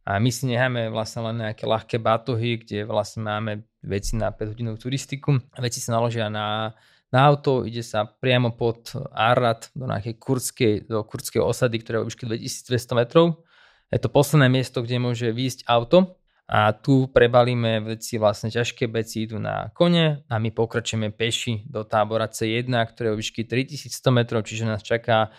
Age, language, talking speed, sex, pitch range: 20-39, Slovak, 165 wpm, male, 110-125 Hz